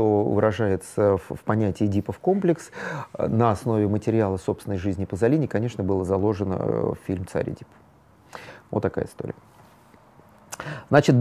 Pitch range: 105-150 Hz